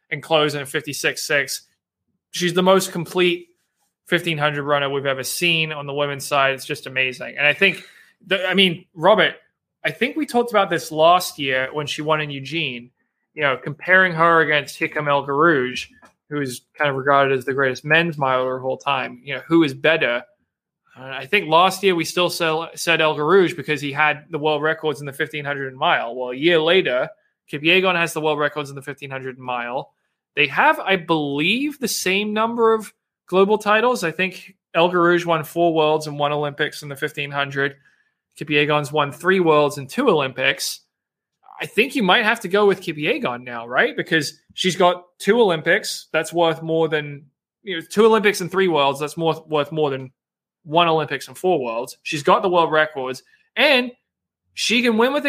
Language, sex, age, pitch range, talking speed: English, male, 20-39, 145-185 Hz, 195 wpm